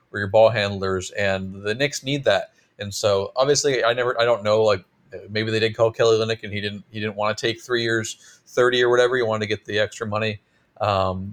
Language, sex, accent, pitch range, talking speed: English, male, American, 105-120 Hz, 240 wpm